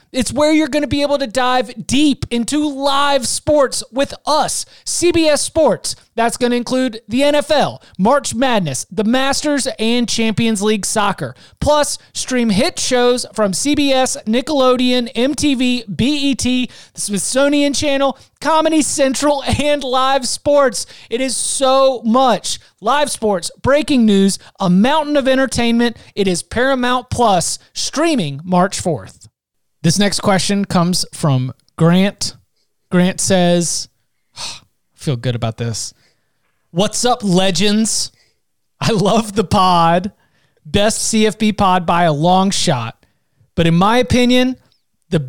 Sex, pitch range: male, 185-265 Hz